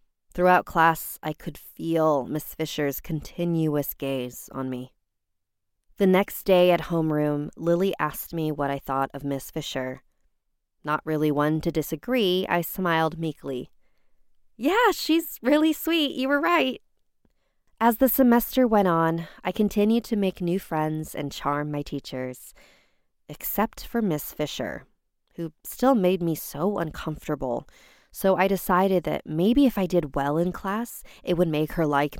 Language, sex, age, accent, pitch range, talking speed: English, female, 20-39, American, 140-185 Hz, 150 wpm